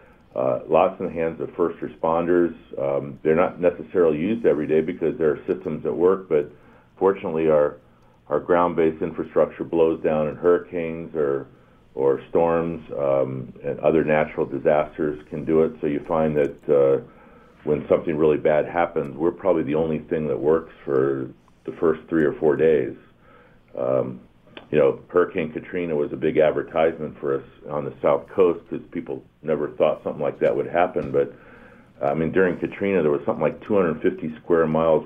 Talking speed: 175 wpm